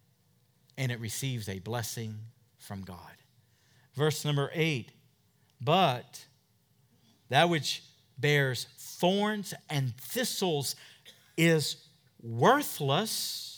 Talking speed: 85 wpm